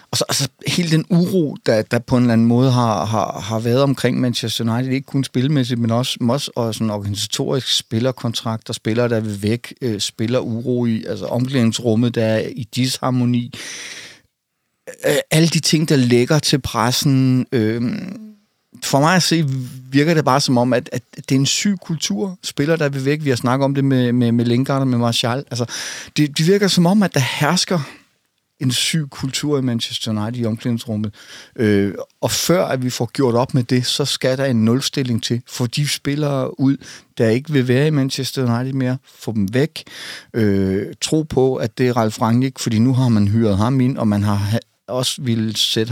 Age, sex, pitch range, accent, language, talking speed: 30-49, male, 115-140 Hz, native, Danish, 200 wpm